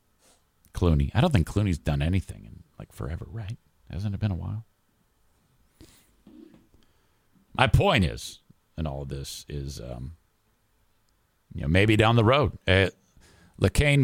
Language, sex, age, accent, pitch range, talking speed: English, male, 50-69, American, 85-110 Hz, 140 wpm